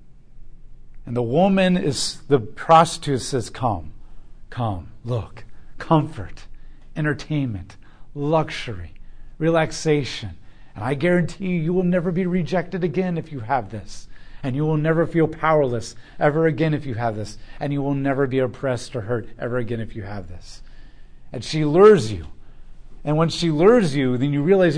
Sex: male